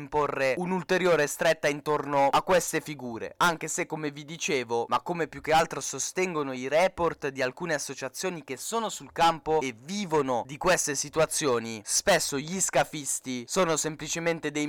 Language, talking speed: Italian, 150 wpm